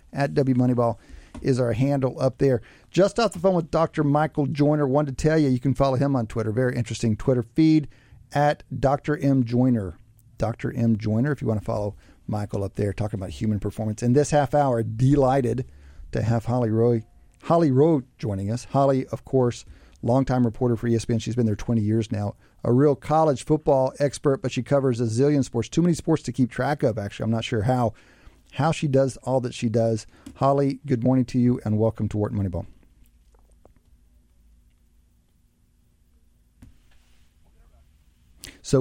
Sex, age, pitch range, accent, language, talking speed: male, 40-59, 110-135 Hz, American, English, 180 wpm